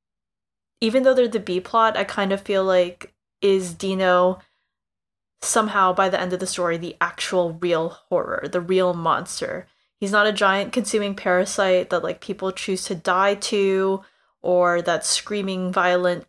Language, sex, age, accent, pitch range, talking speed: English, female, 20-39, American, 180-215 Hz, 160 wpm